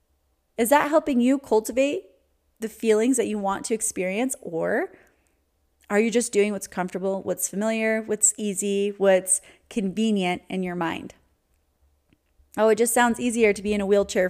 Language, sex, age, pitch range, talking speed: English, female, 30-49, 185-240 Hz, 160 wpm